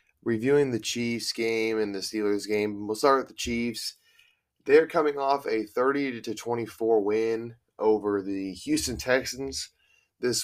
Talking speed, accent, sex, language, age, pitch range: 140 wpm, American, male, English, 10-29, 110-135 Hz